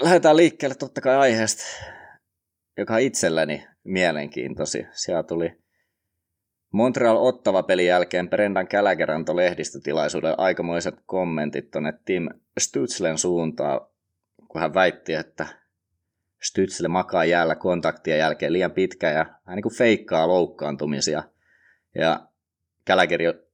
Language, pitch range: Finnish, 80-95 Hz